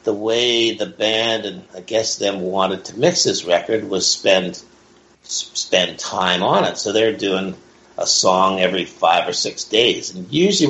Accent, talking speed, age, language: American, 175 wpm, 50-69, English